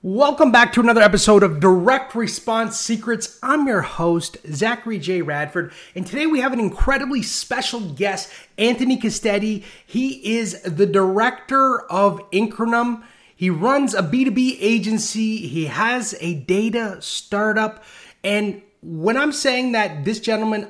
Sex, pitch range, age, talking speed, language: male, 185-235 Hz, 30-49, 140 wpm, English